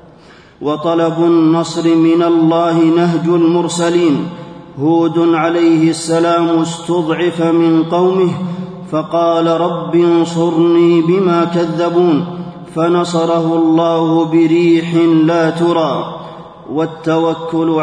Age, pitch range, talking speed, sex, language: 30-49, 165-170 Hz, 75 wpm, male, Arabic